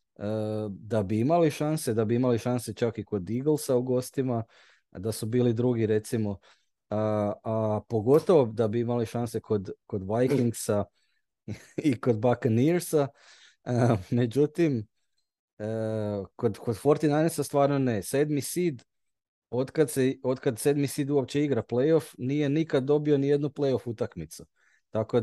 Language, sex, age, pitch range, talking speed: Croatian, male, 30-49, 110-140 Hz, 135 wpm